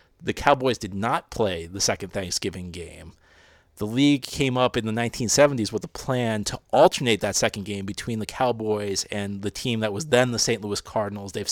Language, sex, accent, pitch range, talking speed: English, male, American, 100-120 Hz, 200 wpm